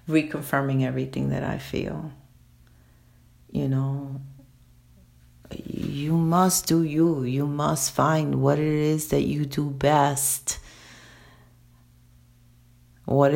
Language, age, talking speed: English, 50-69, 100 wpm